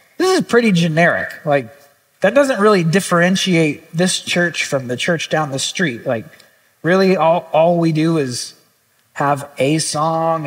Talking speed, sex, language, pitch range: 155 wpm, male, English, 175-240 Hz